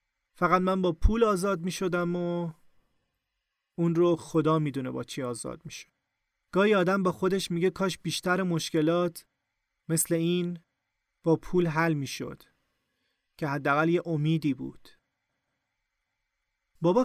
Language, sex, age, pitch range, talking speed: Persian, male, 30-49, 150-180 Hz, 130 wpm